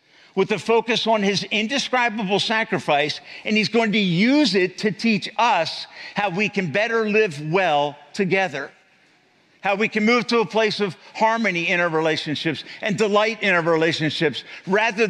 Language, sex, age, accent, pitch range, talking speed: English, male, 50-69, American, 160-210 Hz, 165 wpm